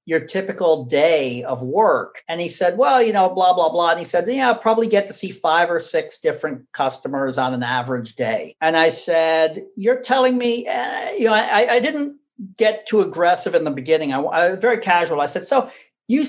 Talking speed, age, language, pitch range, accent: 215 wpm, 50-69, English, 165-230 Hz, American